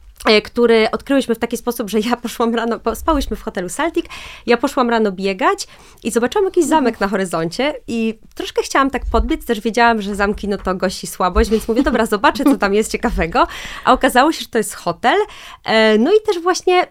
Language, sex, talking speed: Polish, female, 195 wpm